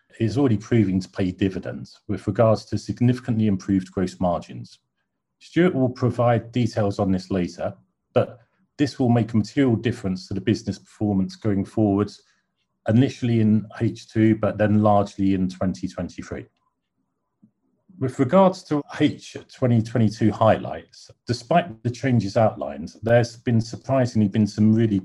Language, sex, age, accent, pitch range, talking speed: English, male, 40-59, British, 100-120 Hz, 135 wpm